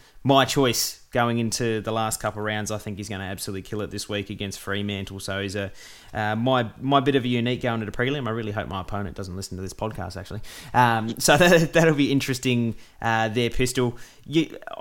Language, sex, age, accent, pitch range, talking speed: English, male, 20-39, Australian, 105-130 Hz, 225 wpm